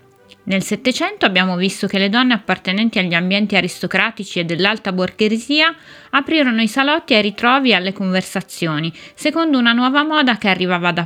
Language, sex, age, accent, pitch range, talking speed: Italian, female, 20-39, native, 180-235 Hz, 155 wpm